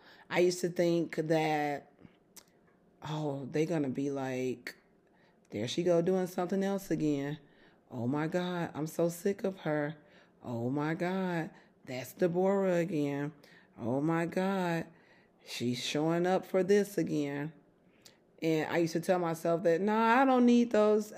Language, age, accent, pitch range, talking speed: English, 30-49, American, 145-180 Hz, 150 wpm